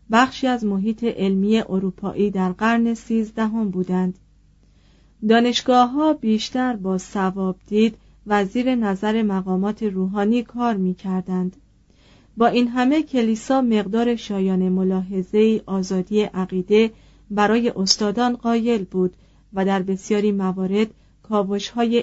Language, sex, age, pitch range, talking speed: Persian, female, 40-59, 190-230 Hz, 105 wpm